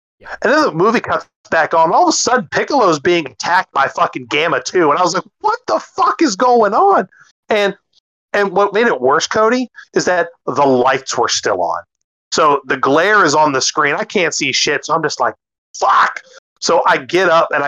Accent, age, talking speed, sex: American, 30-49, 215 wpm, male